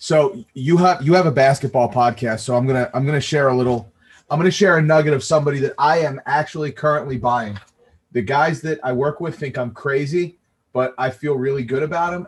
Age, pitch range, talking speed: 30-49, 115-145 Hz, 220 wpm